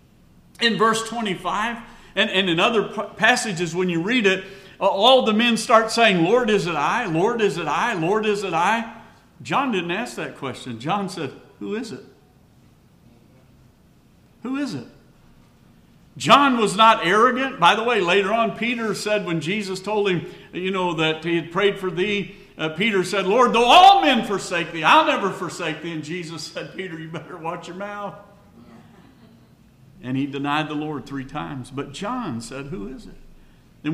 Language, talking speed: English, 180 wpm